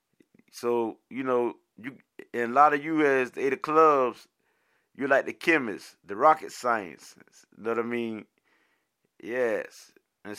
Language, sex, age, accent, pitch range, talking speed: English, male, 30-49, American, 115-145 Hz, 150 wpm